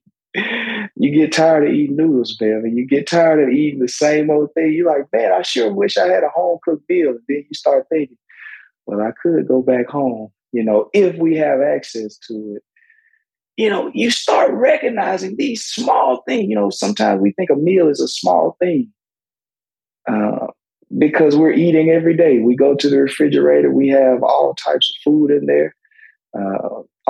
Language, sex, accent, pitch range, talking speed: English, male, American, 120-160 Hz, 185 wpm